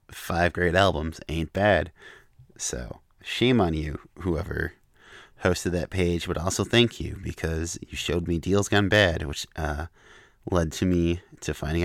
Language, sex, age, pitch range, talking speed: English, male, 30-49, 80-95 Hz, 155 wpm